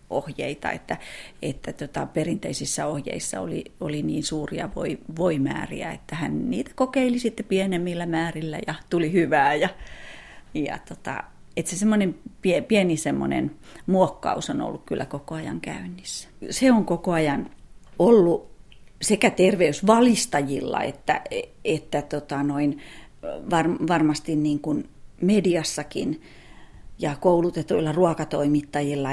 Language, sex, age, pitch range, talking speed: Finnish, female, 30-49, 145-190 Hz, 115 wpm